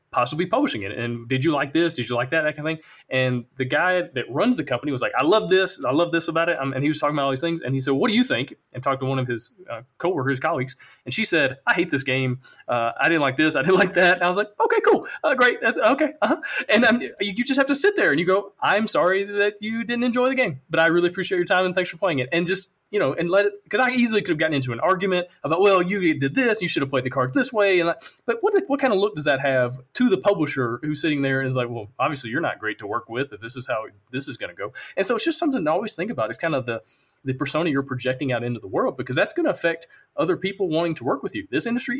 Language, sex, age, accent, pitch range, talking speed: English, male, 20-39, American, 135-205 Hz, 310 wpm